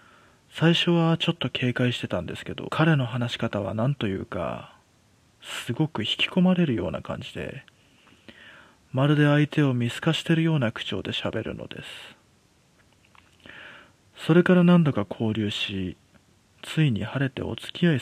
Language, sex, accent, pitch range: Japanese, male, native, 110-150 Hz